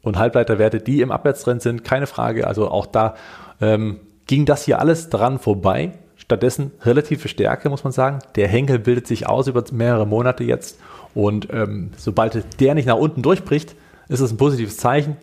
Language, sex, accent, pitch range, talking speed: German, male, German, 110-145 Hz, 180 wpm